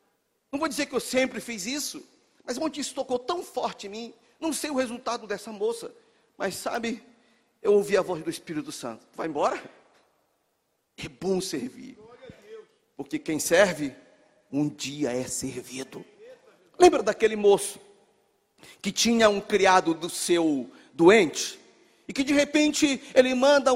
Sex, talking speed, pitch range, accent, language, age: male, 150 wpm, 235-320 Hz, Brazilian, Portuguese, 50-69